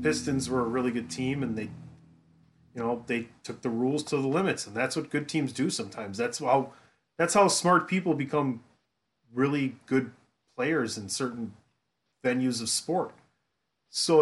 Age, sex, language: 30-49, male, English